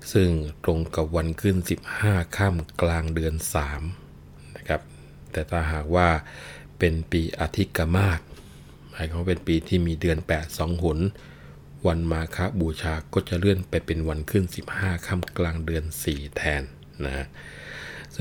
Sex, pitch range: male, 80-90 Hz